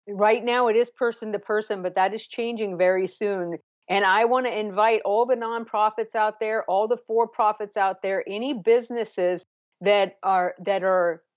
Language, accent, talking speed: English, American, 180 wpm